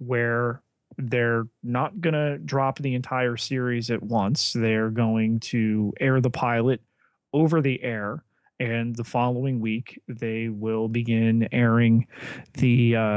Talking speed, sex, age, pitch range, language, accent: 135 wpm, male, 30-49, 115-145 Hz, English, American